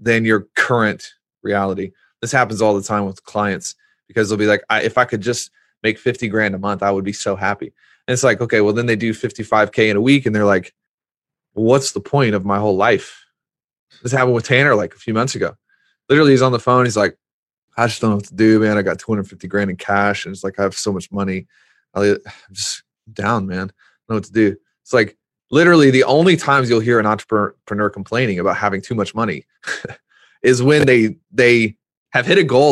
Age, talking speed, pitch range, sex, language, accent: 20-39, 230 wpm, 105-125 Hz, male, English, American